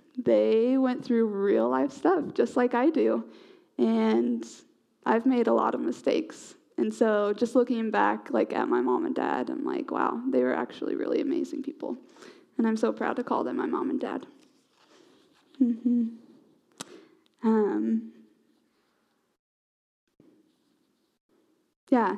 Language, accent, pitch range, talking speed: English, American, 220-295 Hz, 140 wpm